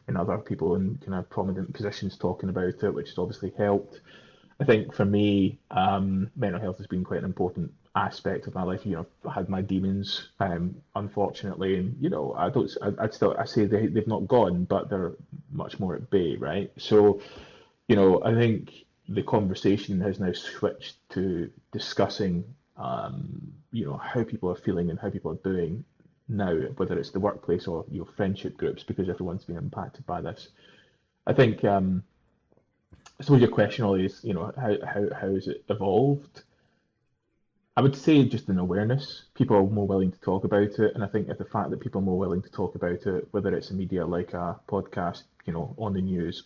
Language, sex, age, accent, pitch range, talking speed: English, male, 20-39, British, 90-105 Hz, 205 wpm